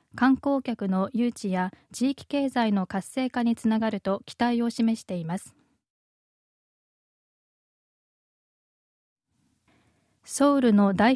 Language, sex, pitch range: Japanese, female, 205-250 Hz